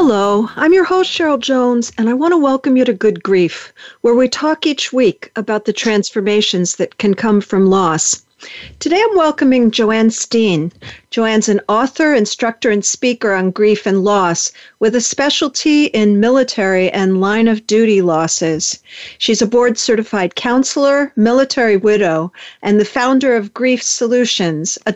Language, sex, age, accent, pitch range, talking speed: English, female, 50-69, American, 195-250 Hz, 160 wpm